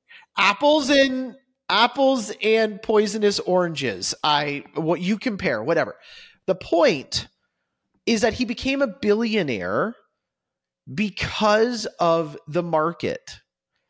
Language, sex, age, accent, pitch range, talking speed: English, male, 30-49, American, 140-215 Hz, 100 wpm